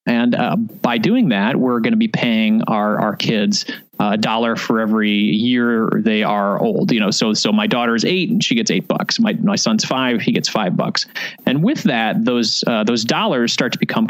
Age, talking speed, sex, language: 30-49, 220 wpm, male, English